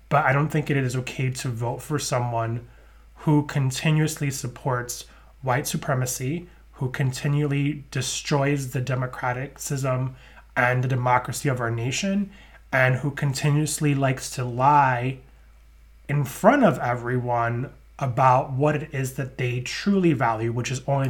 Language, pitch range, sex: English, 125-145 Hz, male